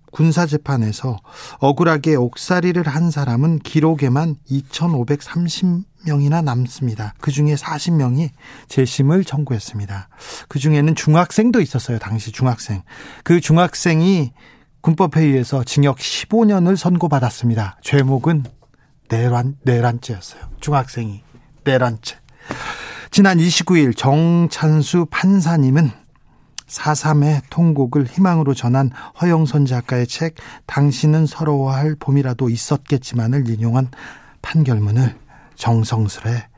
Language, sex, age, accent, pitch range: Korean, male, 40-59, native, 125-160 Hz